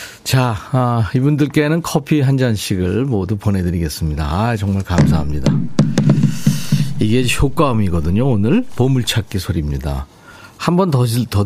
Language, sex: Korean, male